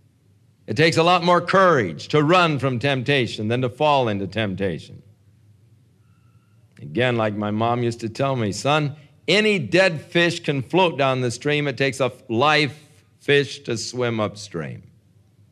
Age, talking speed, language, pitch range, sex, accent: 50-69, 155 wpm, English, 105-140 Hz, male, American